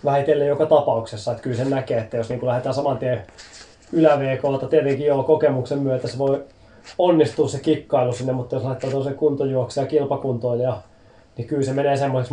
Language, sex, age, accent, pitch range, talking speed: Finnish, male, 20-39, native, 120-140 Hz, 165 wpm